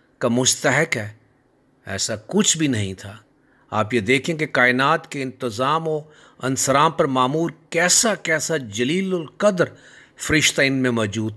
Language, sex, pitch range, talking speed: Urdu, male, 125-165 Hz, 145 wpm